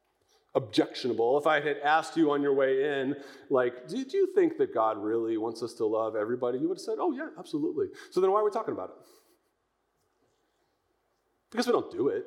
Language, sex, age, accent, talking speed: English, male, 30-49, American, 210 wpm